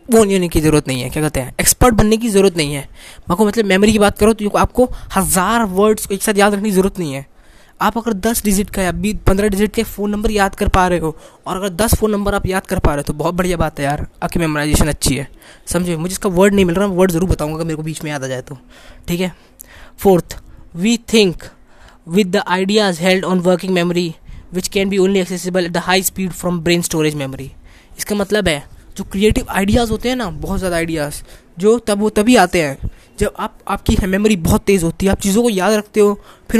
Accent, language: native, Hindi